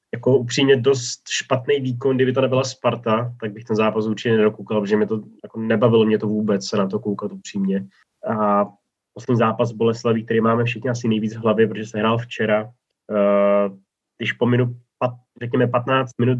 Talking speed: 180 wpm